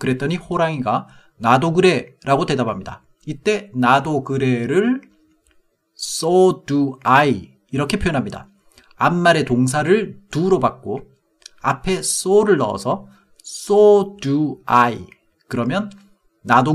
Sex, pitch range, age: male, 125-190 Hz, 40-59